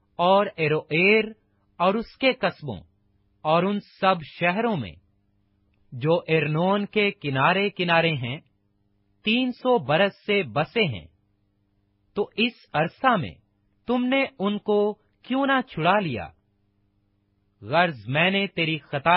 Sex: male